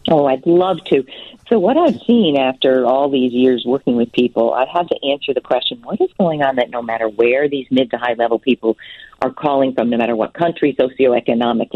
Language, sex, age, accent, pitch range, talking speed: English, female, 50-69, American, 120-150 Hz, 220 wpm